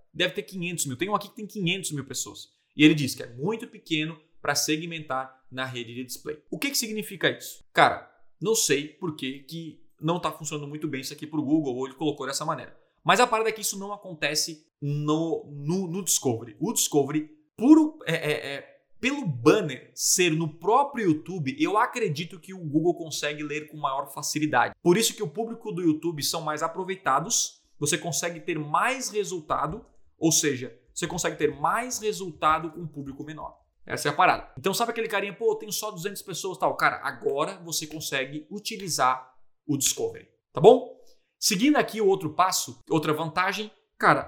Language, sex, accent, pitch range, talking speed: Portuguese, male, Brazilian, 150-205 Hz, 190 wpm